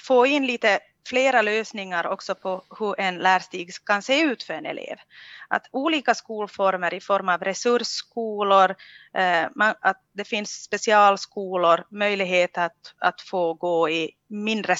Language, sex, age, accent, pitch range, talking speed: Swedish, female, 30-49, Finnish, 180-225 Hz, 140 wpm